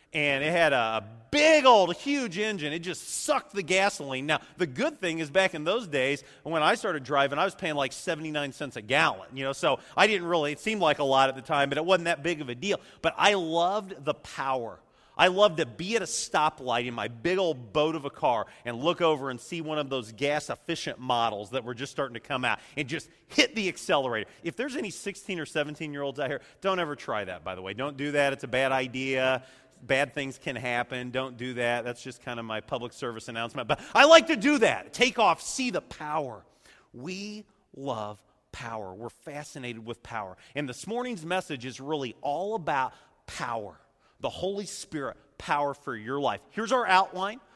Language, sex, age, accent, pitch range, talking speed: English, male, 40-59, American, 130-185 Hz, 215 wpm